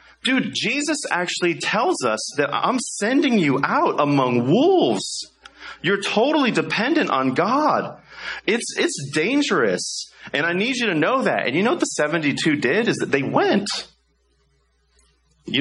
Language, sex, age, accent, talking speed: English, male, 30-49, American, 150 wpm